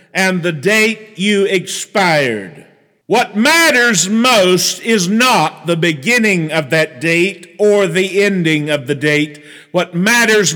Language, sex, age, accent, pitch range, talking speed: English, male, 50-69, American, 180-230 Hz, 130 wpm